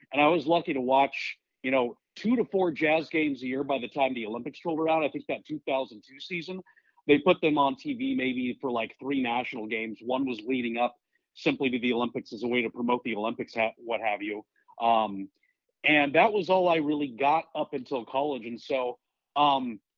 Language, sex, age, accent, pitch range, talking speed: English, male, 40-59, American, 120-155 Hz, 210 wpm